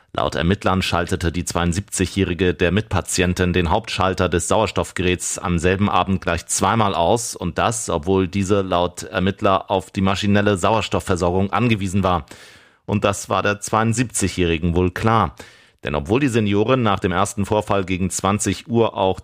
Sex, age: male, 30-49